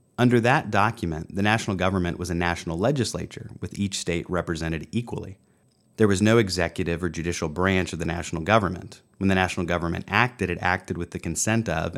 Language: English